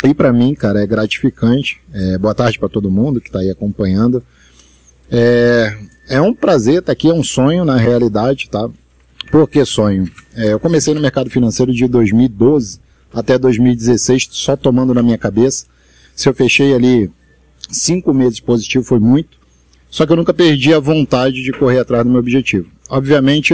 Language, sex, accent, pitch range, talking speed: Portuguese, male, Brazilian, 110-135 Hz, 180 wpm